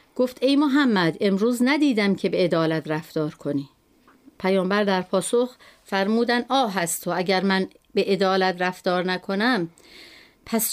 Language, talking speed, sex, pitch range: Persian, 130 wpm, female, 185-250 Hz